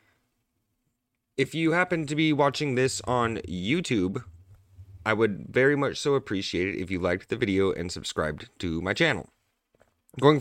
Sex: male